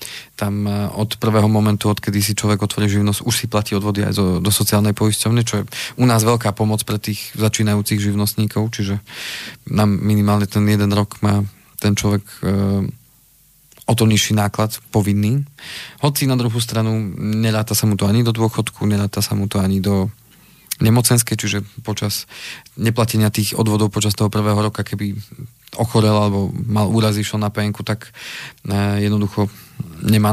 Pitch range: 105-115 Hz